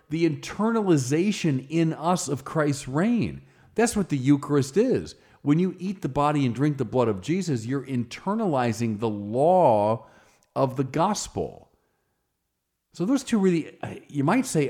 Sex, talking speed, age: male, 150 wpm, 40-59